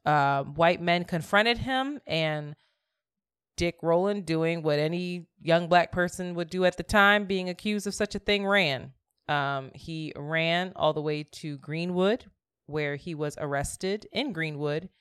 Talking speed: 160 wpm